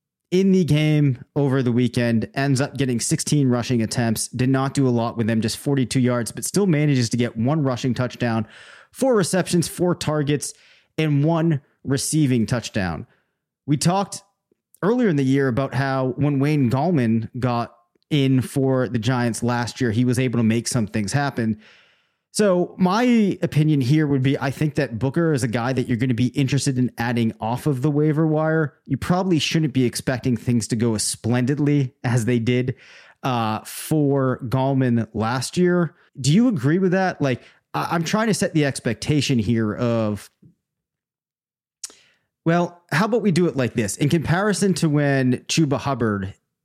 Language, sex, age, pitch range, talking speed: English, male, 30-49, 120-155 Hz, 175 wpm